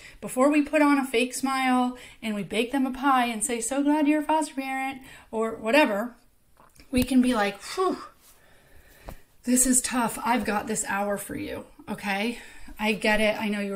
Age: 30-49